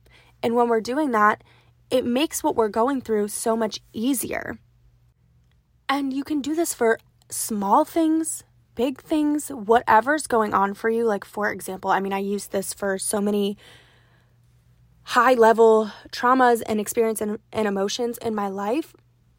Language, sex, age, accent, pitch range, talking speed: English, female, 20-39, American, 195-235 Hz, 155 wpm